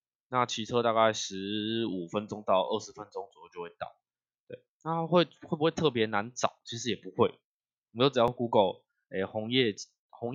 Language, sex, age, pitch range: Chinese, male, 20-39, 105-135 Hz